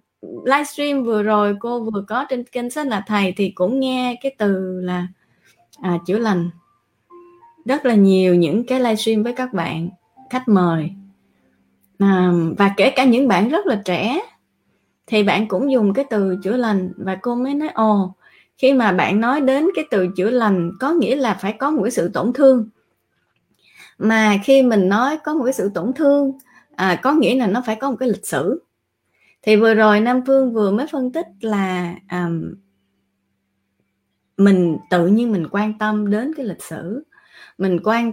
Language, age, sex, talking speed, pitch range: Vietnamese, 20-39, female, 175 wpm, 185-260 Hz